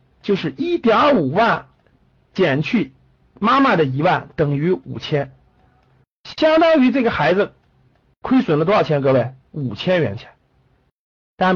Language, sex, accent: Chinese, male, native